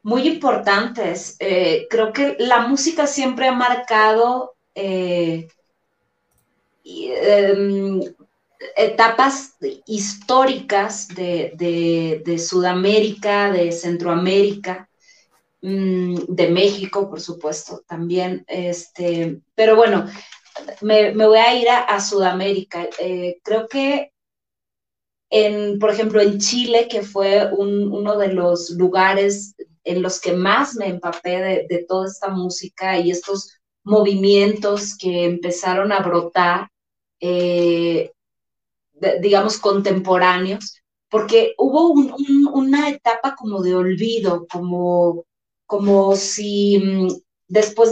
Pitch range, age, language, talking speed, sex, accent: 180-220 Hz, 30-49, Spanish, 100 wpm, female, Mexican